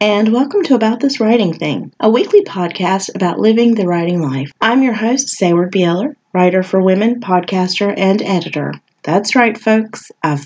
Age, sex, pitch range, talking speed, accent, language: 30-49, female, 170-245 Hz, 170 wpm, American, English